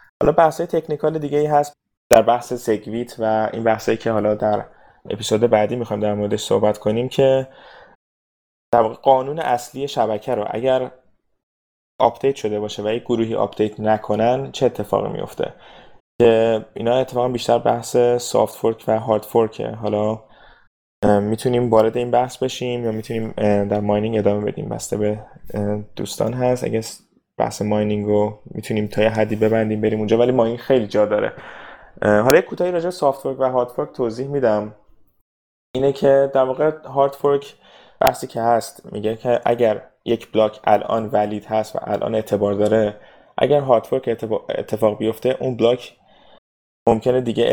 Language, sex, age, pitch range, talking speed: Persian, male, 20-39, 105-125 Hz, 155 wpm